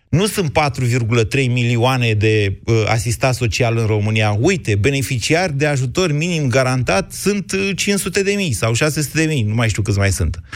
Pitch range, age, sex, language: 115-180 Hz, 30-49, male, Romanian